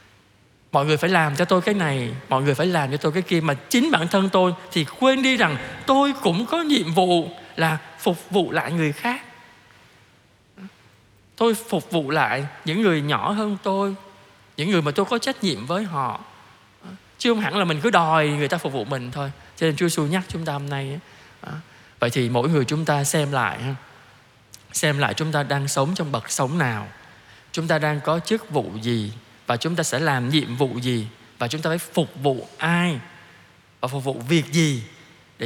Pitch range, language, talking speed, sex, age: 130-175 Hz, Vietnamese, 205 wpm, male, 20-39